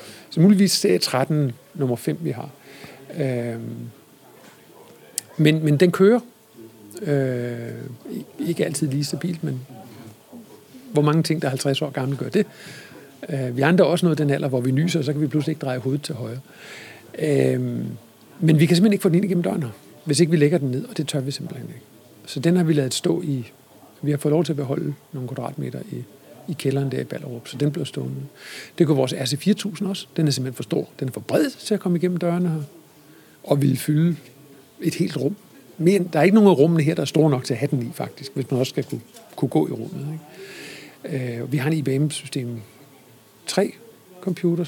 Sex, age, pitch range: male, 50-69, 135-170 Hz